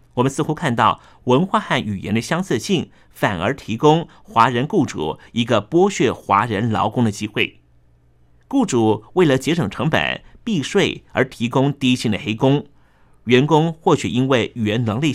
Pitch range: 110-150 Hz